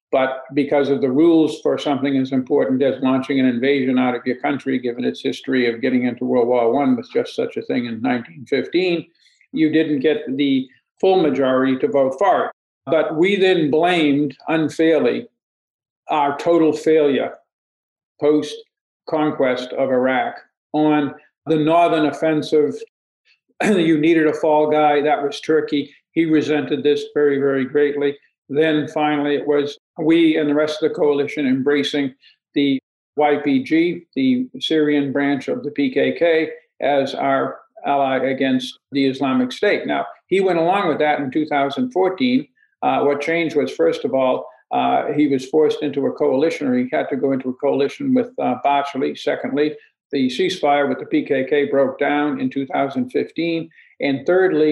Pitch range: 140-165 Hz